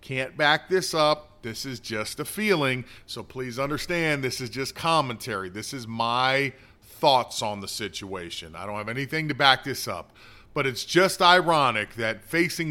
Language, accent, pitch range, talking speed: English, American, 115-165 Hz, 175 wpm